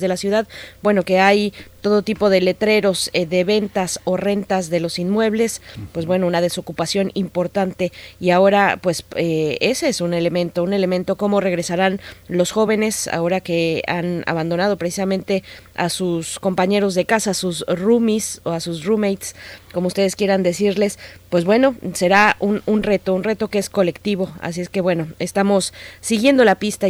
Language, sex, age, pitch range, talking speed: Spanish, female, 20-39, 180-215 Hz, 170 wpm